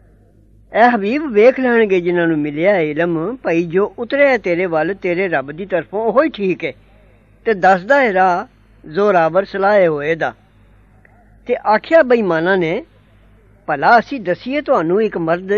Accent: Indian